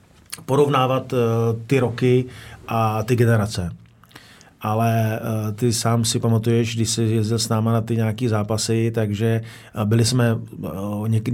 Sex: male